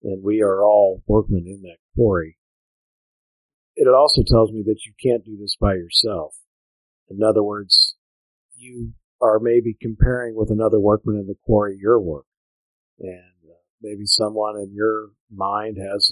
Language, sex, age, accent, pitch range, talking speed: English, male, 50-69, American, 100-115 Hz, 155 wpm